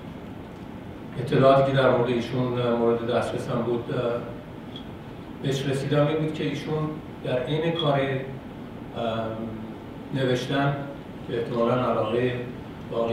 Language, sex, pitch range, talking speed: Persian, male, 120-140 Hz, 105 wpm